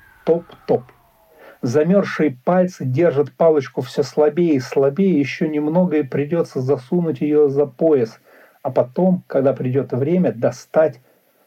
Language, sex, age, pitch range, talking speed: Russian, male, 50-69, 130-180 Hz, 120 wpm